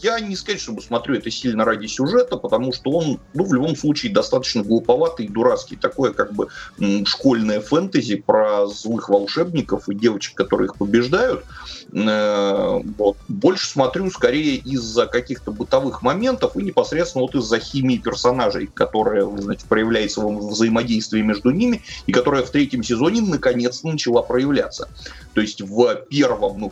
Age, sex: 30-49, male